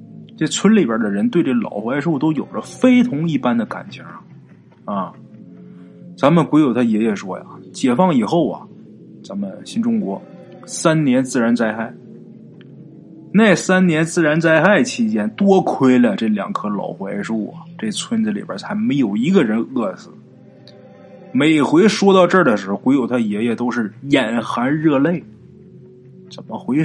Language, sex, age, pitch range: Chinese, male, 20-39, 155-235 Hz